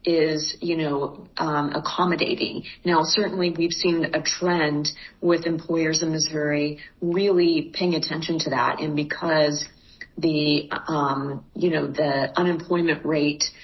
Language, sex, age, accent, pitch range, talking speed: English, female, 40-59, American, 150-180 Hz, 130 wpm